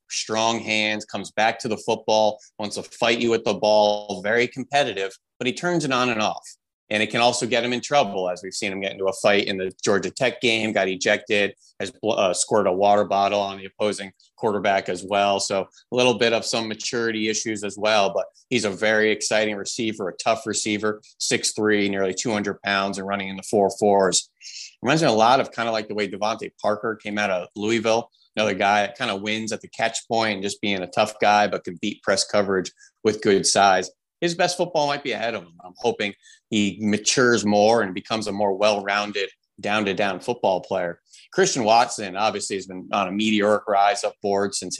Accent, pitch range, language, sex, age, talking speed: American, 100-115 Hz, English, male, 30-49, 215 wpm